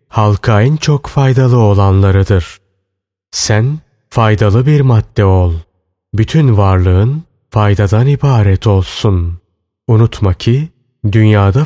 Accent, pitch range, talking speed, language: native, 95-125 Hz, 95 wpm, Turkish